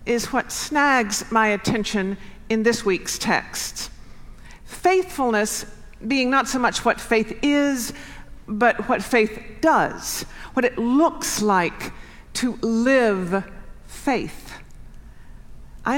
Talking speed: 110 wpm